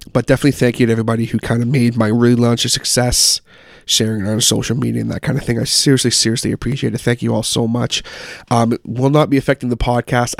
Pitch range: 115-130 Hz